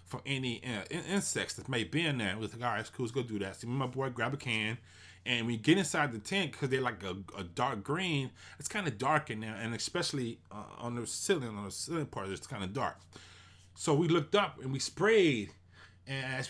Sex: male